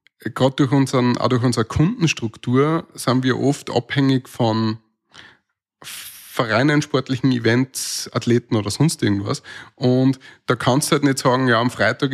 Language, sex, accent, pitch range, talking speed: German, male, Austrian, 115-145 Hz, 145 wpm